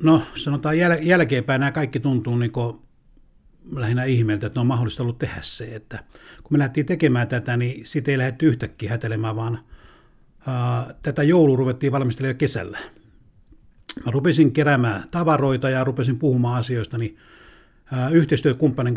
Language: Finnish